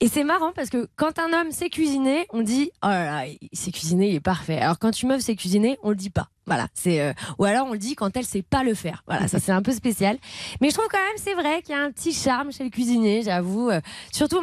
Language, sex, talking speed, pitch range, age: French, female, 290 wpm, 215-300 Hz, 20-39